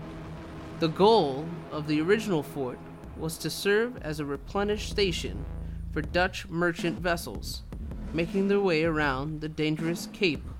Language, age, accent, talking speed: English, 30-49, American, 135 wpm